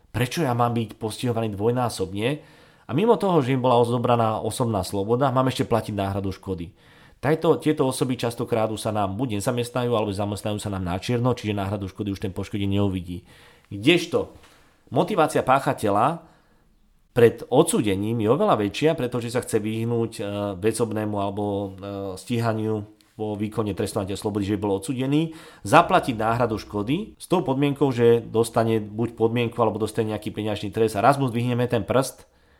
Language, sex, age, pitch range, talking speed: Slovak, male, 40-59, 105-125 Hz, 155 wpm